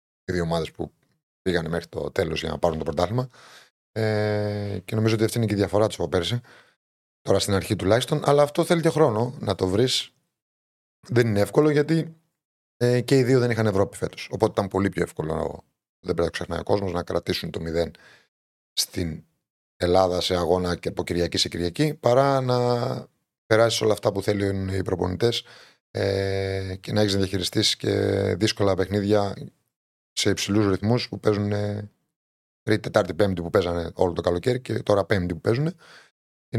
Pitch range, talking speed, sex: 95-125 Hz, 180 wpm, male